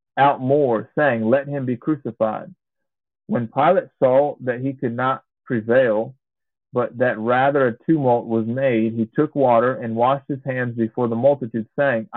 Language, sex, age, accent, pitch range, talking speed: English, male, 40-59, American, 115-140 Hz, 165 wpm